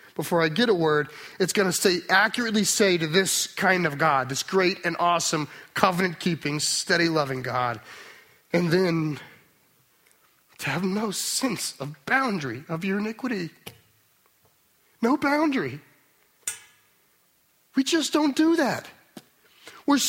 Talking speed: 125 wpm